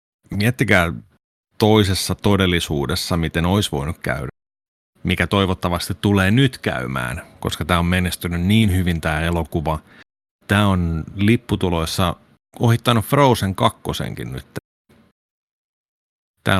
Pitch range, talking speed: 80-95 Hz, 100 wpm